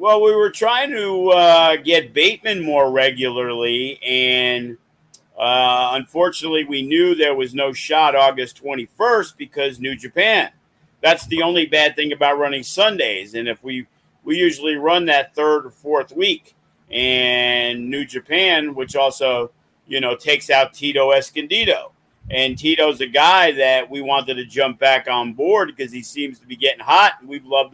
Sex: male